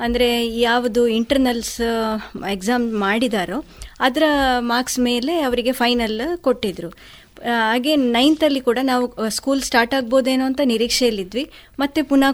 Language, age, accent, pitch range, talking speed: Kannada, 20-39, native, 230-270 Hz, 105 wpm